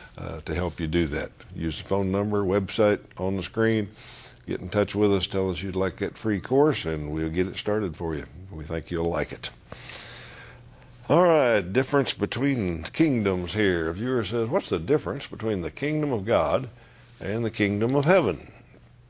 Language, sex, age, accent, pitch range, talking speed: English, male, 60-79, American, 90-110 Hz, 190 wpm